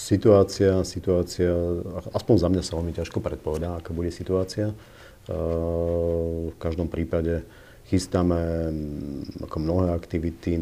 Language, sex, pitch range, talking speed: English, male, 80-90 Hz, 100 wpm